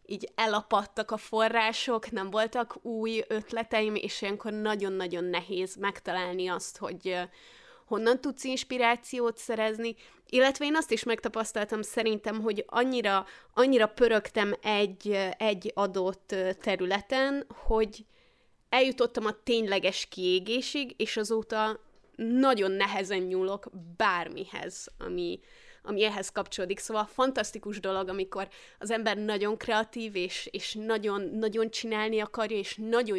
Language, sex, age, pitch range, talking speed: Hungarian, female, 20-39, 195-230 Hz, 115 wpm